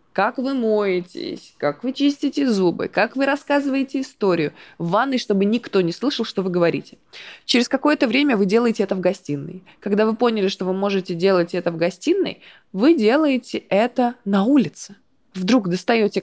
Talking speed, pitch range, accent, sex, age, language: 165 wpm, 180-240 Hz, native, female, 20-39, Russian